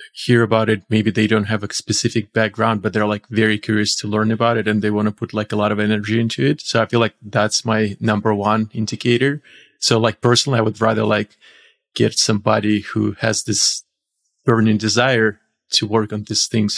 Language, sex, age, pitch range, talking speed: English, male, 30-49, 105-115 Hz, 210 wpm